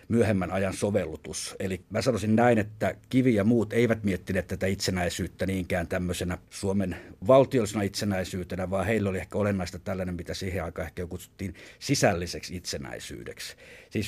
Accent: native